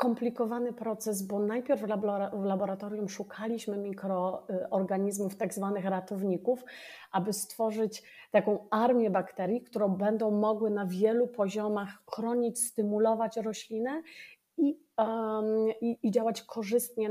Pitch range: 200-235 Hz